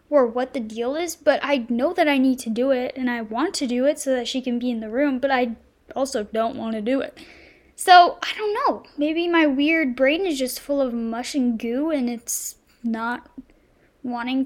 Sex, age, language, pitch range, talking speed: female, 10-29, English, 250-320 Hz, 230 wpm